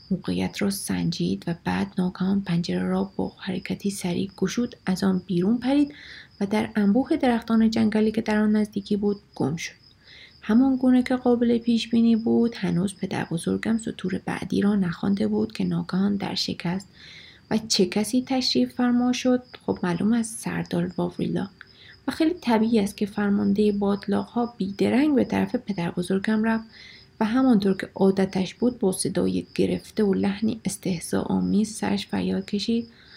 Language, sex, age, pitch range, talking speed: Persian, female, 30-49, 190-230 Hz, 150 wpm